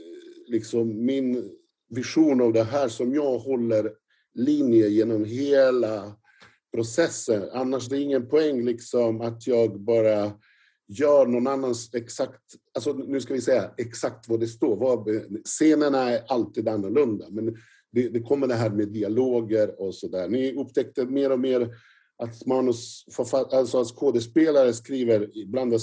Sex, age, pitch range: male, 50-69, 110-145 Hz